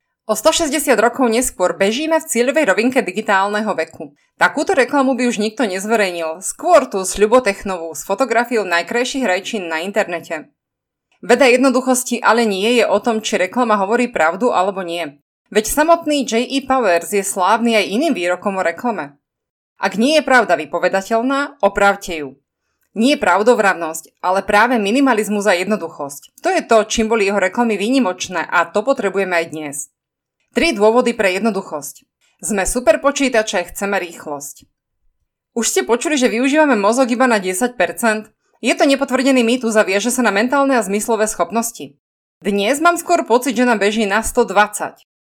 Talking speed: 150 wpm